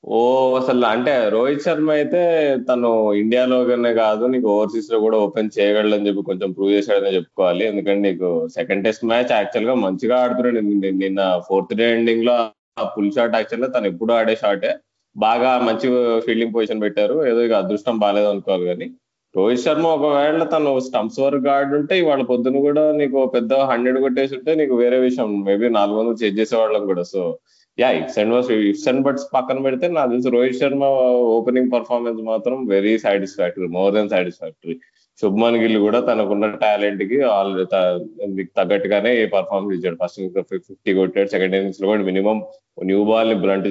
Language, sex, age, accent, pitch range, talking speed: Telugu, male, 20-39, native, 100-130 Hz, 165 wpm